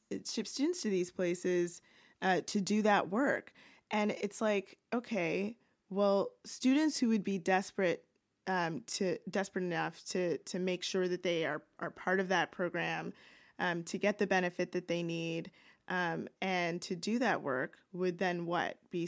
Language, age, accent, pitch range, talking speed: English, 20-39, American, 175-205 Hz, 170 wpm